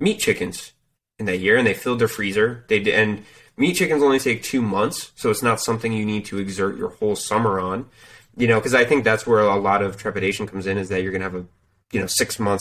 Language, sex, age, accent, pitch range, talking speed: English, male, 20-39, American, 95-110 Hz, 260 wpm